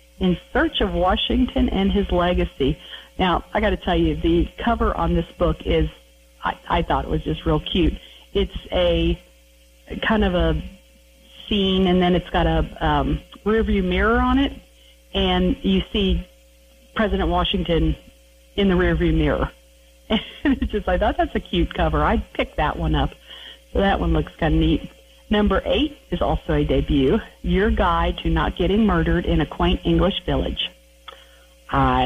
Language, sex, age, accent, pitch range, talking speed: English, female, 50-69, American, 135-195 Hz, 170 wpm